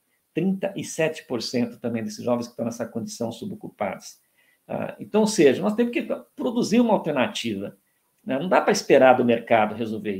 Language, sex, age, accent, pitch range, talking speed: English, male, 50-69, Brazilian, 120-170 Hz, 145 wpm